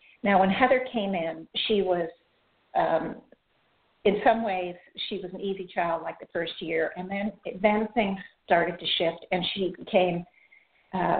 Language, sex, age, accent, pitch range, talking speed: English, female, 50-69, American, 185-220 Hz, 165 wpm